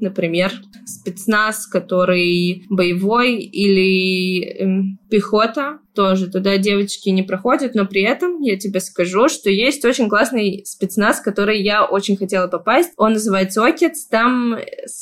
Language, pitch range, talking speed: Russian, 195-235 Hz, 135 wpm